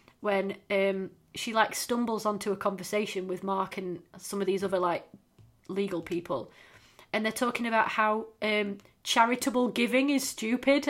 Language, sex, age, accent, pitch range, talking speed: English, female, 30-49, British, 200-245 Hz, 155 wpm